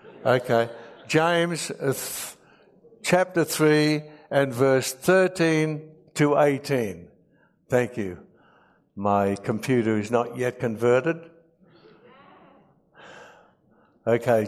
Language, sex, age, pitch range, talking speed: English, male, 60-79, 135-170 Hz, 75 wpm